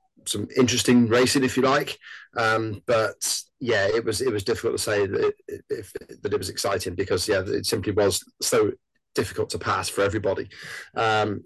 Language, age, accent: English, 30-49, British